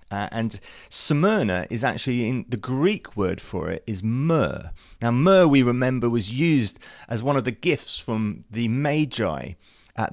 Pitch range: 105-135 Hz